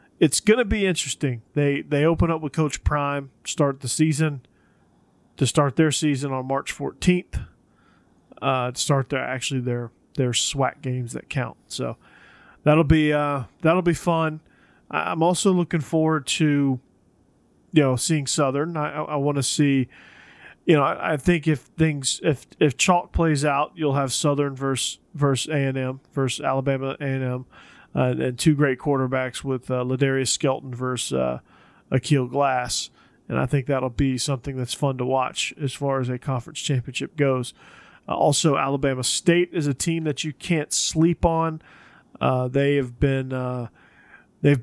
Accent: American